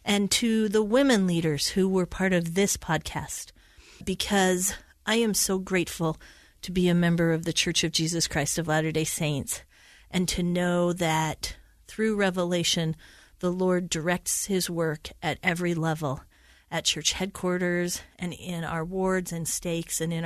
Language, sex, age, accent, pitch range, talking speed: English, female, 40-59, American, 165-210 Hz, 160 wpm